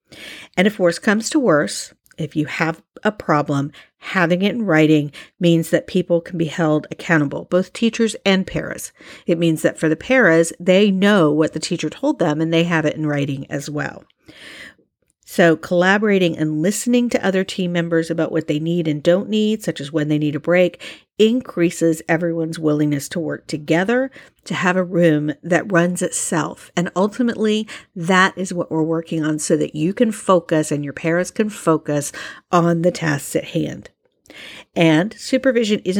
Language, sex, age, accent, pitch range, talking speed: English, female, 50-69, American, 155-195 Hz, 180 wpm